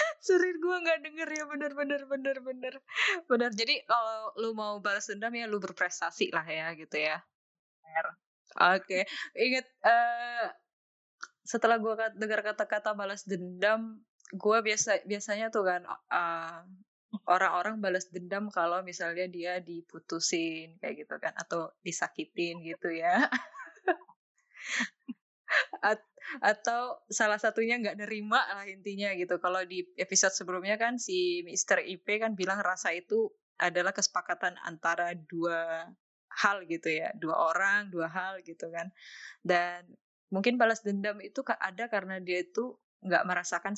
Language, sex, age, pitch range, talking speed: Malay, female, 20-39, 175-230 Hz, 130 wpm